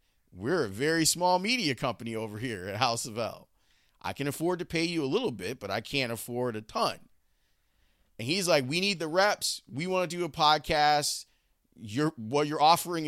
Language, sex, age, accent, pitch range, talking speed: English, male, 30-49, American, 100-145 Hz, 195 wpm